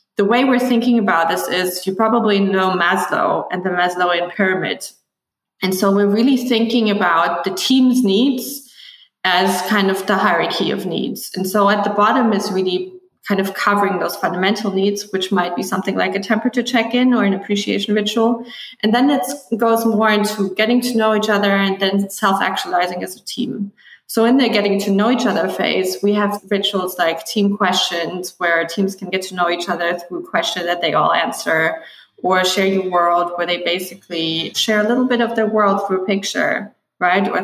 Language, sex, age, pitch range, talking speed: English, female, 20-39, 185-220 Hz, 195 wpm